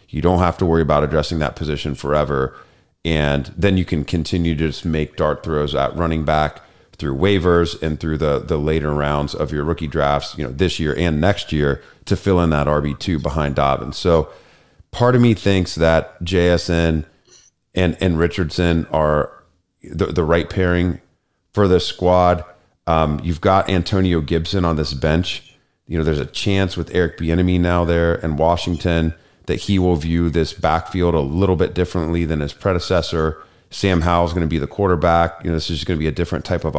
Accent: American